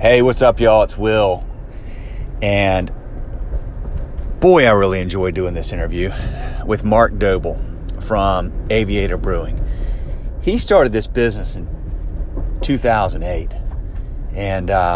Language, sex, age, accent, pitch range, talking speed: English, male, 30-49, American, 95-115 Hz, 105 wpm